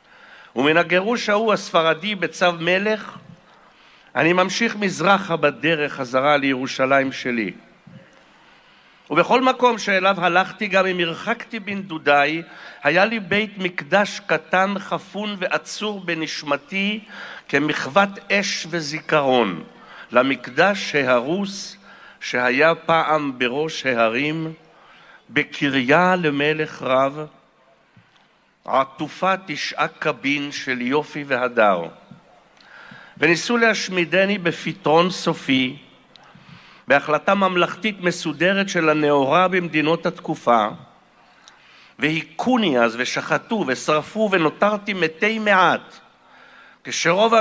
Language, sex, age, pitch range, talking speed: Hebrew, male, 60-79, 150-195 Hz, 85 wpm